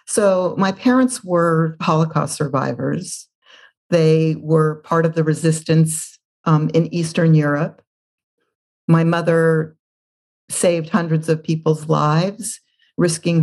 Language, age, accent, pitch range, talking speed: English, 50-69, American, 155-180 Hz, 105 wpm